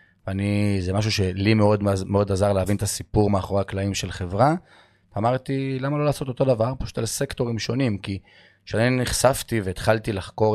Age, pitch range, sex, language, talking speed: 30-49, 95-110 Hz, male, Hebrew, 165 wpm